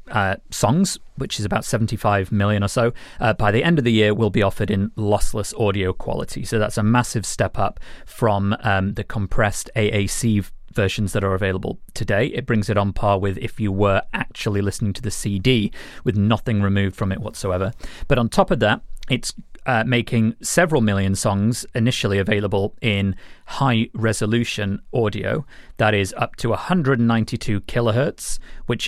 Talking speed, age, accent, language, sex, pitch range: 170 wpm, 30-49, British, English, male, 100-120 Hz